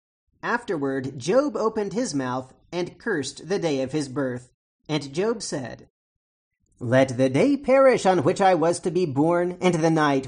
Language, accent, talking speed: English, American, 170 wpm